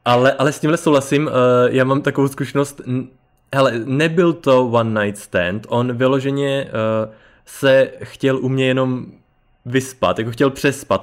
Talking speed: 150 wpm